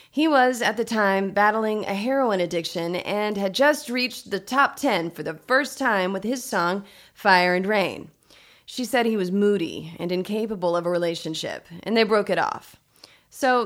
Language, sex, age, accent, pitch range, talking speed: English, female, 30-49, American, 180-245 Hz, 185 wpm